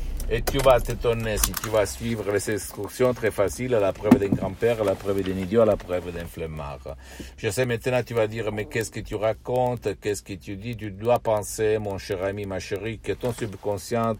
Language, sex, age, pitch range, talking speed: Italian, male, 60-79, 90-110 Hz, 225 wpm